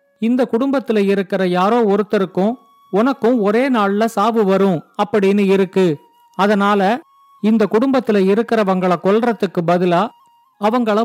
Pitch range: 195-230 Hz